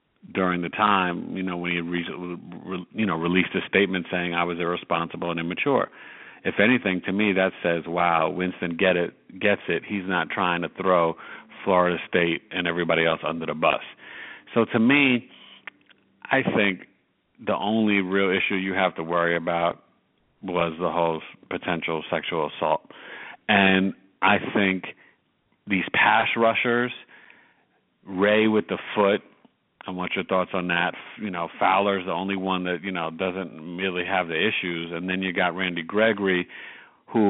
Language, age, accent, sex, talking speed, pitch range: English, 40-59, American, male, 160 wpm, 90-105 Hz